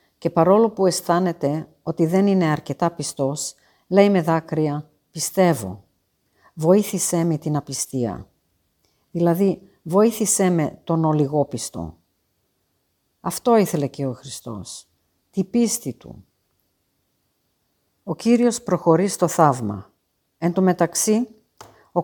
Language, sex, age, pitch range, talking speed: Greek, female, 50-69, 140-190 Hz, 105 wpm